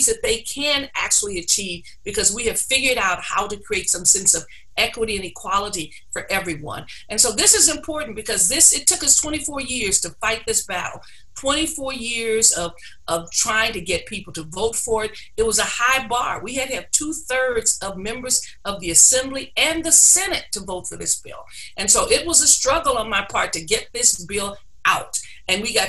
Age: 50-69